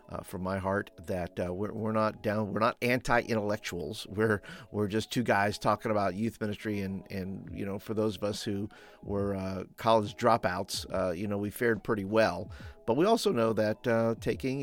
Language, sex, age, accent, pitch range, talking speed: English, male, 50-69, American, 100-120 Hz, 200 wpm